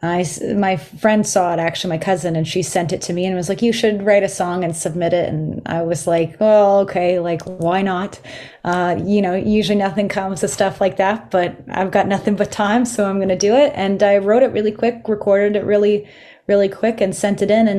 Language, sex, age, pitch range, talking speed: English, female, 30-49, 175-200 Hz, 245 wpm